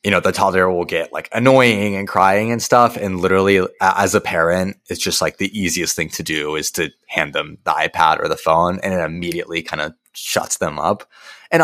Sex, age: male, 20-39